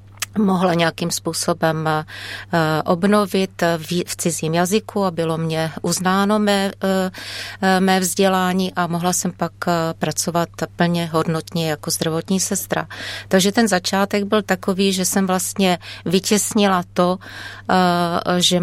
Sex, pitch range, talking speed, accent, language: female, 165-190 Hz, 115 wpm, native, Czech